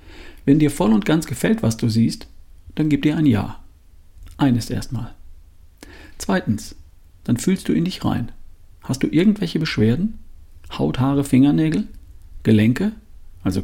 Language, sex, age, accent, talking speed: German, male, 50-69, German, 140 wpm